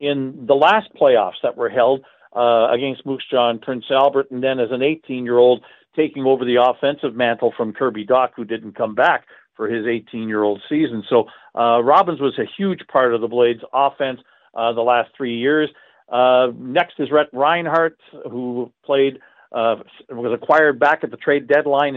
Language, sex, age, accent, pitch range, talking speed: English, male, 50-69, American, 125-155 Hz, 180 wpm